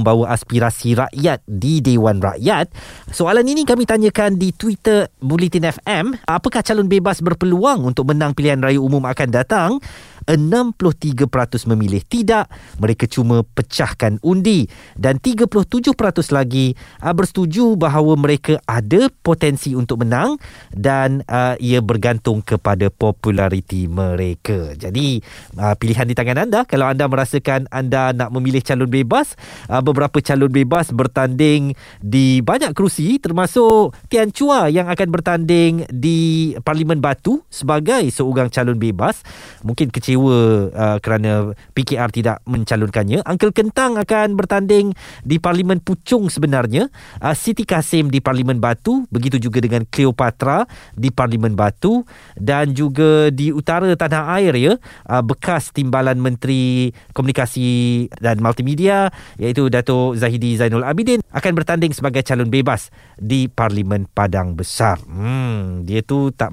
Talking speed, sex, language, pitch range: 130 wpm, male, Malay, 120-170 Hz